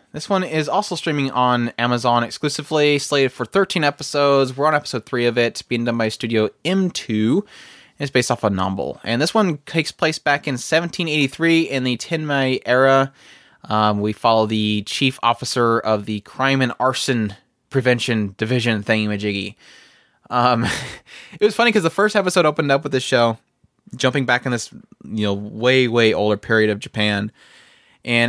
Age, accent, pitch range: 20-39, American, 110-140 Hz